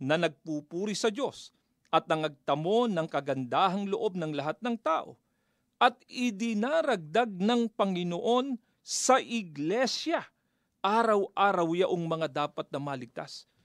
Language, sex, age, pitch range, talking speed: Filipino, male, 40-59, 165-225 Hz, 110 wpm